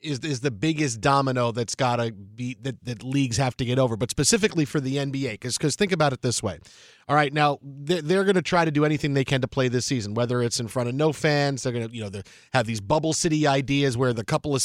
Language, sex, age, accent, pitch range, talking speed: English, male, 40-59, American, 125-155 Hz, 260 wpm